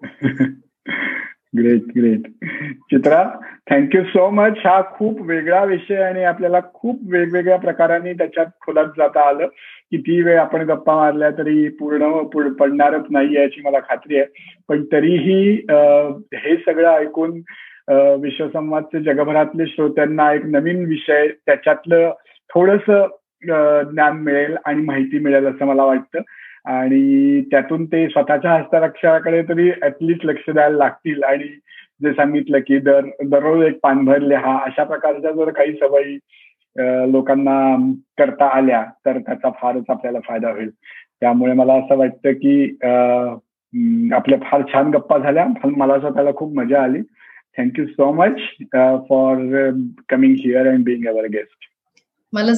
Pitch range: 140-180 Hz